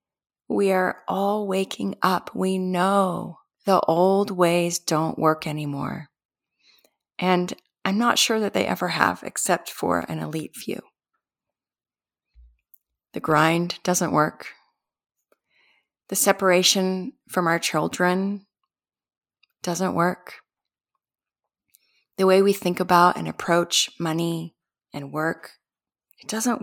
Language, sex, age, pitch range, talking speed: English, female, 30-49, 170-200 Hz, 110 wpm